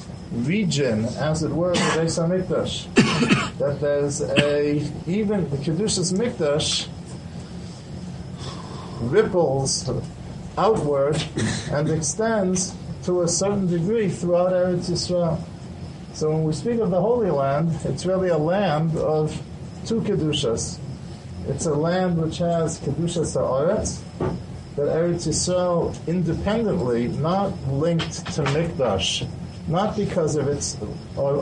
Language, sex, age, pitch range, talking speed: English, male, 50-69, 145-180 Hz, 115 wpm